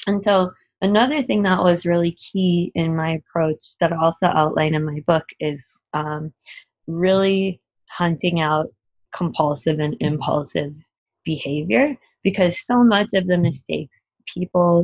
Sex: female